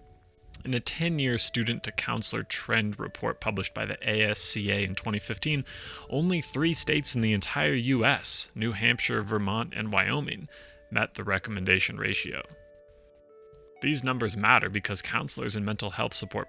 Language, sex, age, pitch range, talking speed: English, male, 30-49, 100-120 Hz, 135 wpm